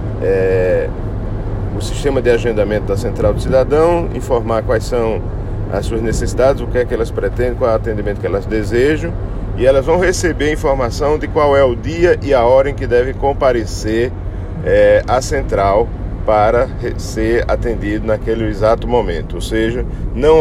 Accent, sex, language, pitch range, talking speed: Brazilian, male, Portuguese, 100-120 Hz, 170 wpm